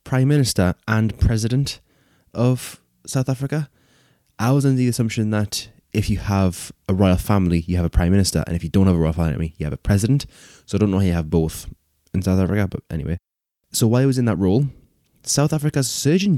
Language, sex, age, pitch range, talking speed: English, male, 20-39, 95-125 Hz, 215 wpm